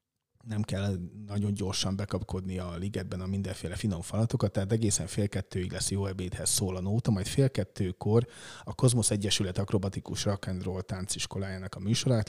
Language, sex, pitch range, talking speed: Hungarian, male, 95-115 Hz, 150 wpm